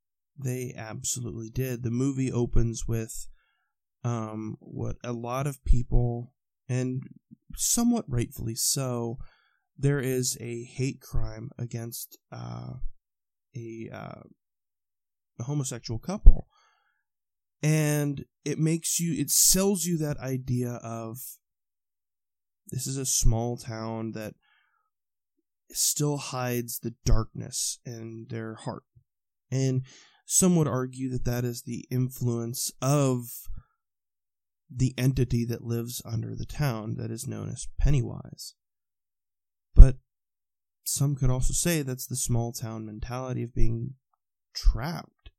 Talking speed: 115 wpm